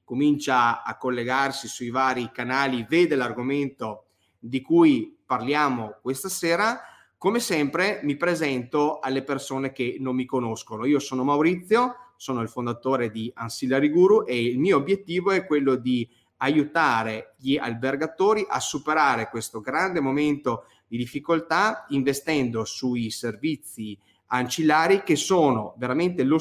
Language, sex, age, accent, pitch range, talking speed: Italian, male, 30-49, native, 125-160 Hz, 130 wpm